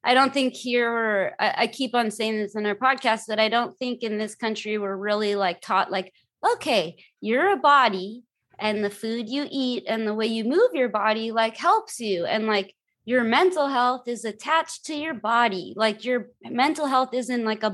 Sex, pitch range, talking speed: female, 205-240 Hz, 205 wpm